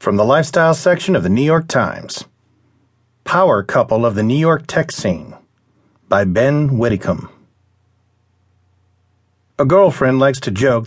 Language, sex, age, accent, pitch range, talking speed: English, male, 50-69, American, 105-155 Hz, 140 wpm